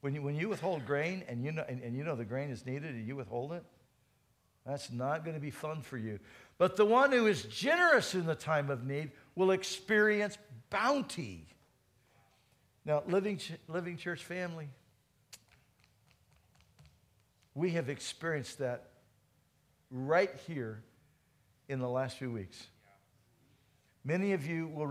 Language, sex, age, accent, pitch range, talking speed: English, male, 60-79, American, 120-155 Hz, 150 wpm